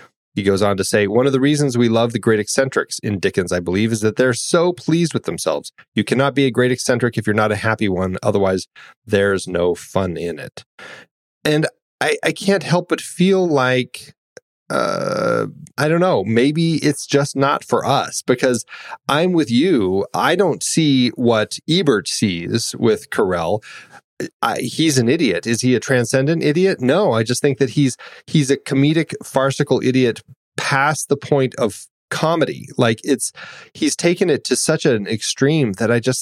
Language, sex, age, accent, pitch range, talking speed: English, male, 30-49, American, 115-155 Hz, 180 wpm